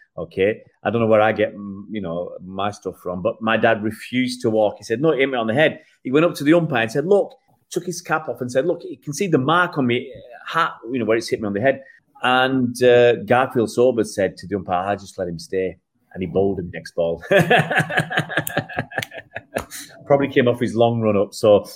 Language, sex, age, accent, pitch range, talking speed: English, male, 30-49, British, 100-140 Hz, 240 wpm